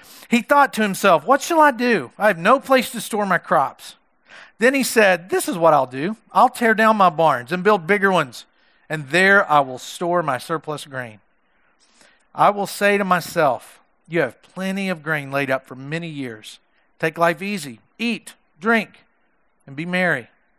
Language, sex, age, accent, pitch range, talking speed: English, male, 40-59, American, 165-230 Hz, 185 wpm